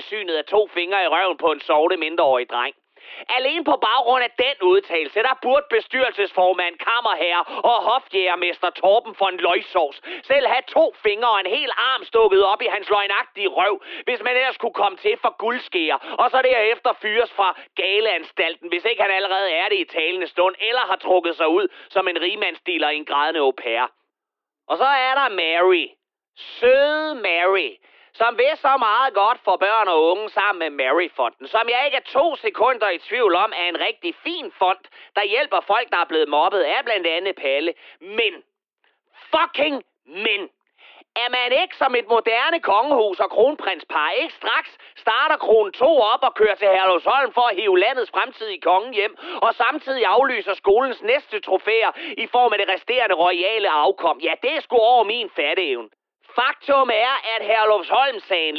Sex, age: male, 30-49